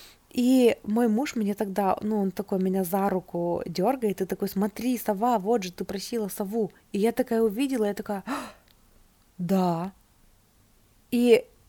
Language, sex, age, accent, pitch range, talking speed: Russian, female, 20-39, native, 180-220 Hz, 155 wpm